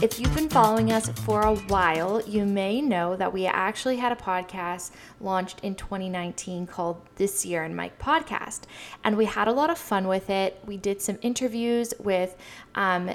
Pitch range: 185-230 Hz